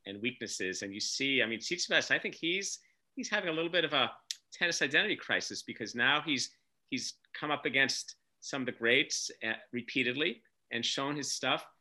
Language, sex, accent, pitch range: English, male, American, 120-155 Hz